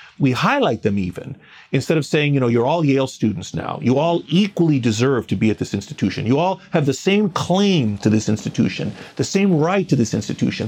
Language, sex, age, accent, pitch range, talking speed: English, male, 40-59, American, 130-180 Hz, 215 wpm